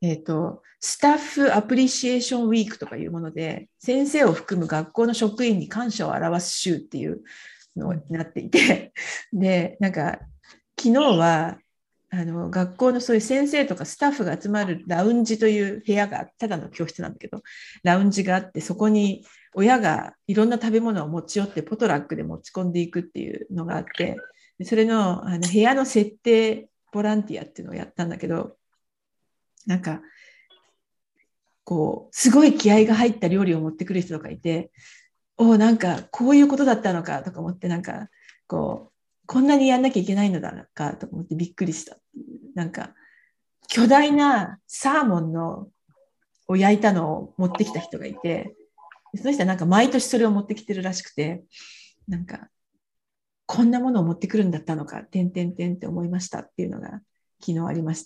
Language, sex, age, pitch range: Japanese, female, 50-69, 175-235 Hz